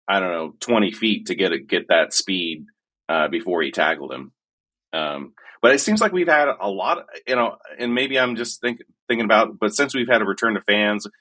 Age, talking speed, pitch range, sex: 30-49, 230 wpm, 100-120 Hz, male